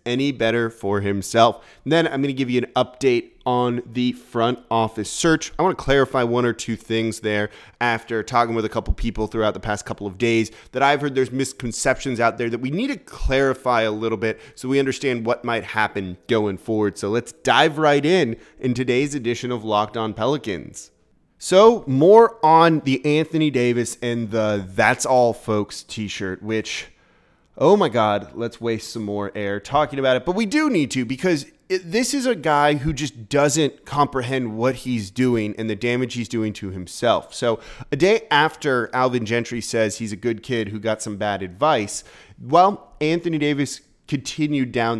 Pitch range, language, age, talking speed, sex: 110-145 Hz, English, 20-39, 190 wpm, male